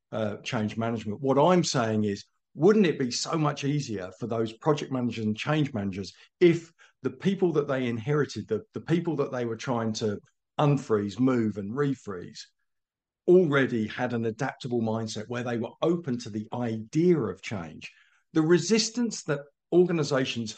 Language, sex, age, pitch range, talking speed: English, male, 50-69, 115-155 Hz, 165 wpm